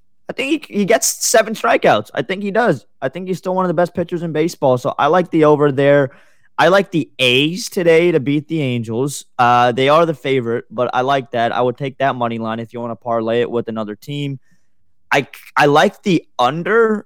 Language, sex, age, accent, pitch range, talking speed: English, male, 20-39, American, 125-160 Hz, 230 wpm